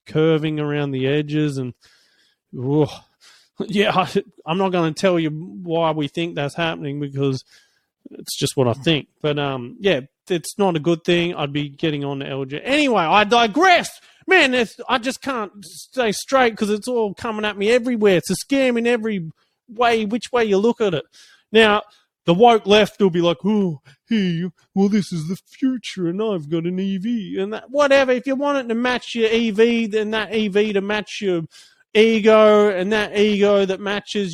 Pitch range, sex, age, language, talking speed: 160-220 Hz, male, 30-49, English, 185 wpm